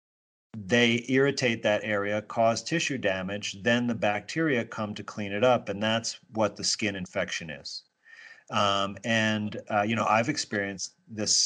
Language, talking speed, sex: English, 155 wpm, male